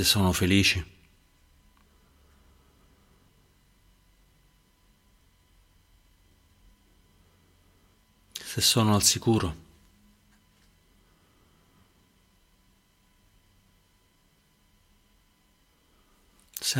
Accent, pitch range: native, 90-100 Hz